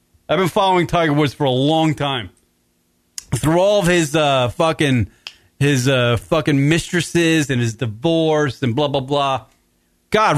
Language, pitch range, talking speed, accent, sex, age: English, 110-175 Hz, 155 wpm, American, male, 30-49